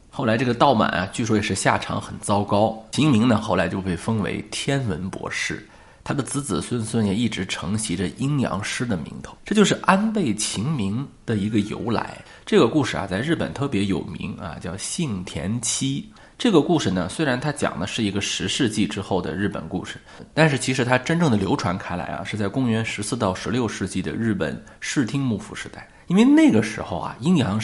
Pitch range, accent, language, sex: 100-140 Hz, native, Chinese, male